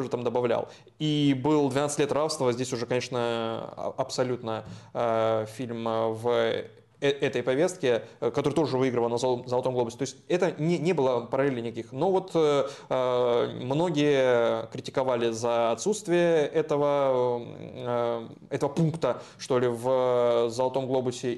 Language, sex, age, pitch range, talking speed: Russian, male, 20-39, 125-150 Hz, 130 wpm